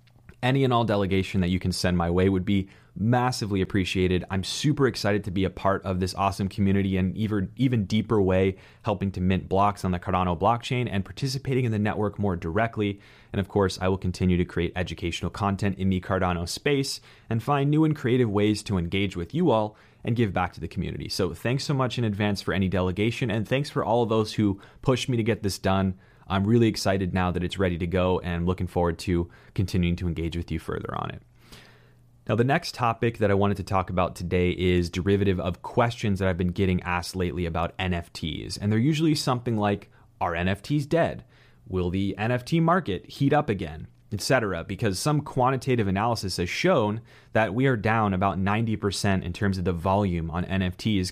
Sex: male